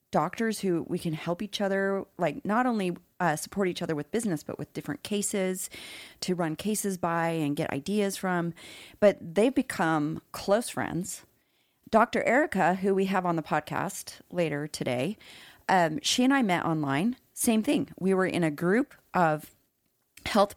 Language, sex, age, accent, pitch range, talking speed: English, female, 30-49, American, 175-235 Hz, 170 wpm